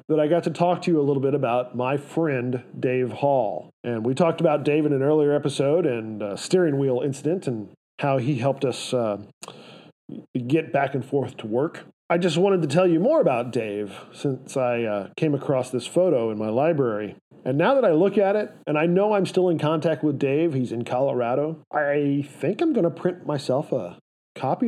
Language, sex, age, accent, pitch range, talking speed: English, male, 40-59, American, 135-180 Hz, 215 wpm